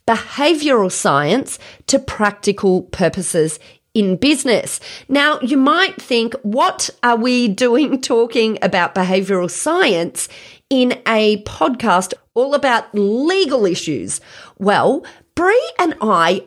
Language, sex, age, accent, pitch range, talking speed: English, female, 40-59, Australian, 195-270 Hz, 110 wpm